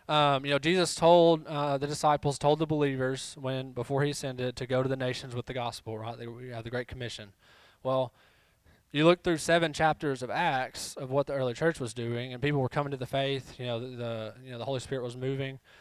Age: 20-39